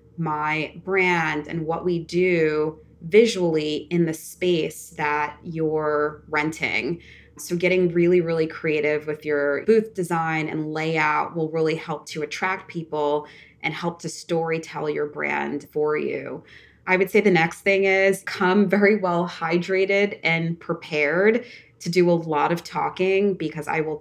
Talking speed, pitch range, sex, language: 150 wpm, 150-180 Hz, female, English